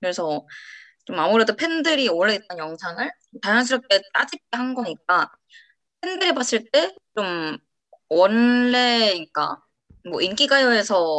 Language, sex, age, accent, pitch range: Korean, female, 20-39, native, 180-260 Hz